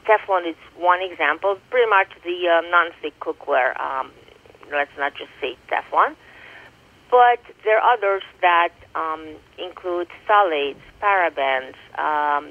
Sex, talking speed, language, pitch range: female, 125 wpm, English, 165-210 Hz